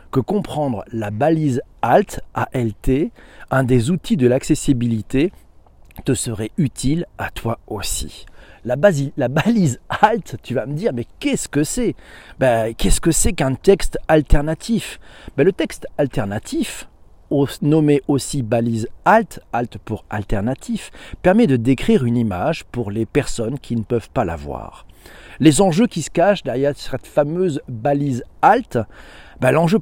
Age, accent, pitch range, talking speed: 40-59, French, 115-170 Hz, 150 wpm